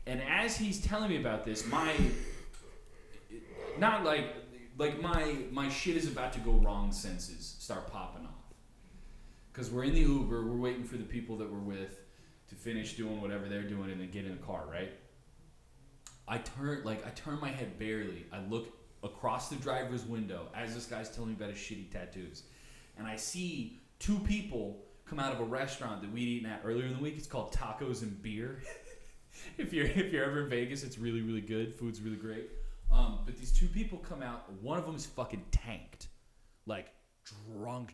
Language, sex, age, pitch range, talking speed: English, male, 20-39, 105-140 Hz, 195 wpm